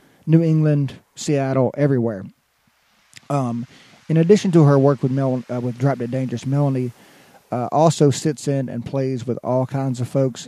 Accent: American